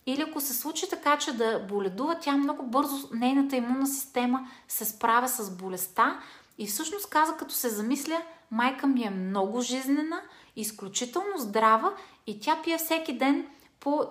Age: 30-49